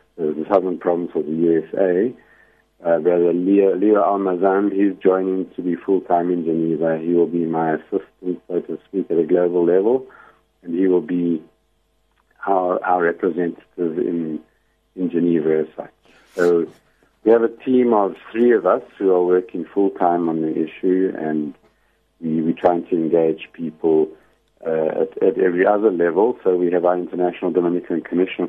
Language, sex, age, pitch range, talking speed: English, male, 50-69, 80-95 Hz, 160 wpm